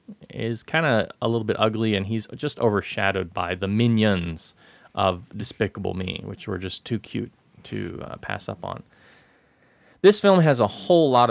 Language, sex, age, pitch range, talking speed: English, male, 30-49, 95-120 Hz, 175 wpm